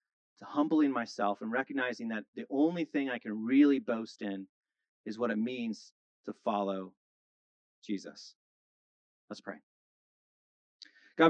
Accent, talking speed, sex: American, 125 wpm, male